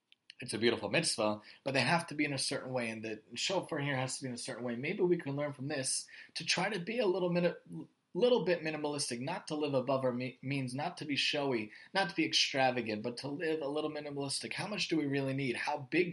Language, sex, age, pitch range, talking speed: English, male, 20-39, 125-150 Hz, 250 wpm